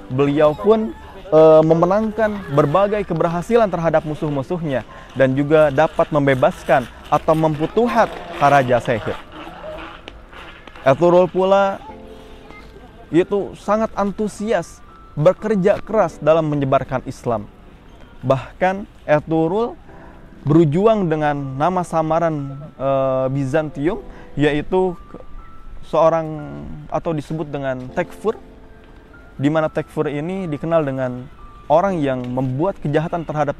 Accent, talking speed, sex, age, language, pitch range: native, 90 wpm, male, 20-39, Indonesian, 135-175 Hz